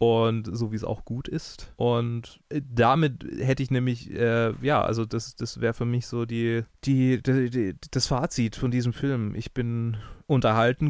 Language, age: German, 20-39